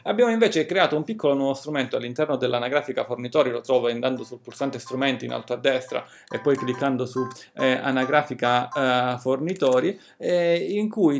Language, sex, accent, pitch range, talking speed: Italian, male, native, 130-160 Hz, 165 wpm